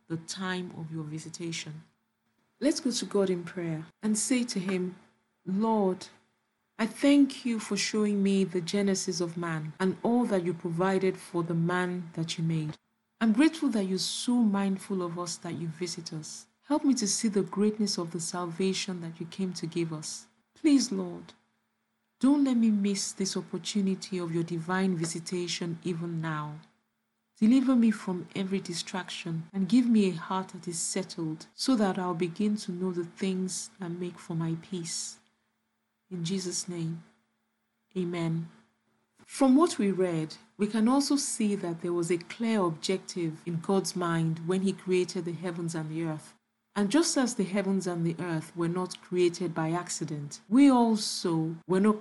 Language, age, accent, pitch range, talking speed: English, 40-59, Nigerian, 170-205 Hz, 175 wpm